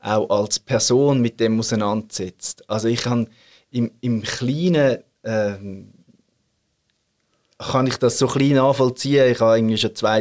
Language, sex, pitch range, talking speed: German, male, 115-145 Hz, 140 wpm